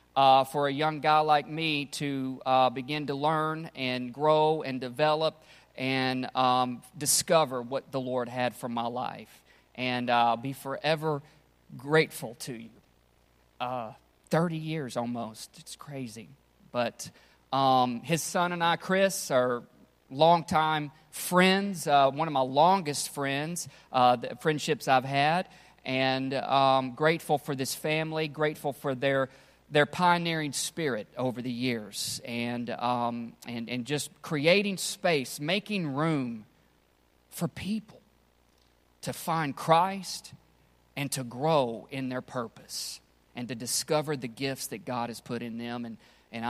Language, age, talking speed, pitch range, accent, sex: English, 40-59, 140 wpm, 125-155 Hz, American, male